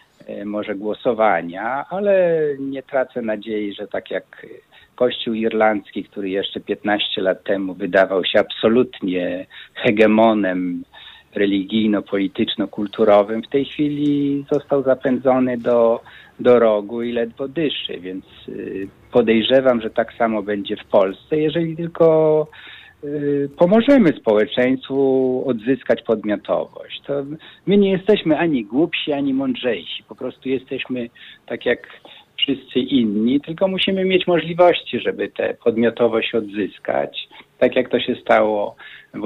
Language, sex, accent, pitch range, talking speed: Polish, male, native, 105-155 Hz, 115 wpm